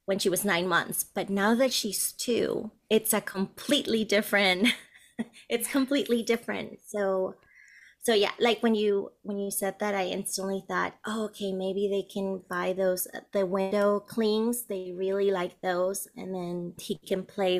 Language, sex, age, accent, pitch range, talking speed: English, female, 30-49, American, 190-230 Hz, 165 wpm